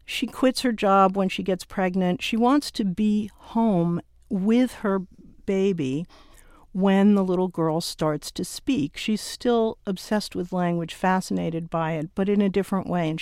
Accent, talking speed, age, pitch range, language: American, 170 wpm, 50-69, 170-210 Hz, English